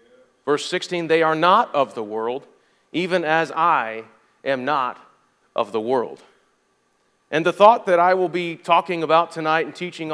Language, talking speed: English, 165 wpm